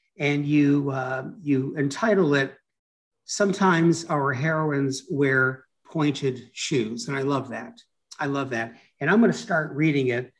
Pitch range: 130-160 Hz